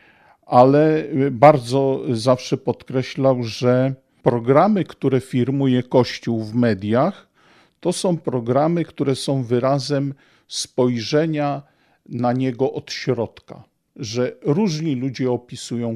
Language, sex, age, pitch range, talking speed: Polish, male, 50-69, 115-140 Hz, 100 wpm